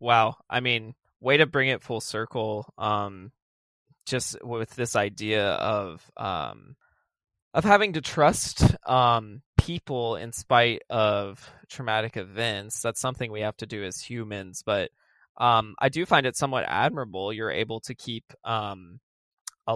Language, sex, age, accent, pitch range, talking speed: English, male, 20-39, American, 105-120 Hz, 150 wpm